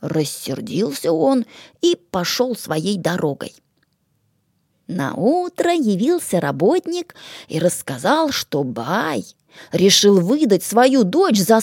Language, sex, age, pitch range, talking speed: English, female, 20-39, 165-260 Hz, 100 wpm